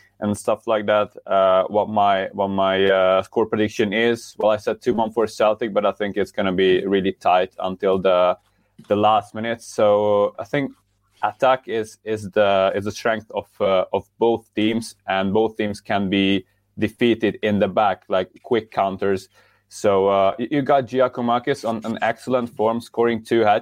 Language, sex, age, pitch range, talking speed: English, male, 20-39, 95-115 Hz, 185 wpm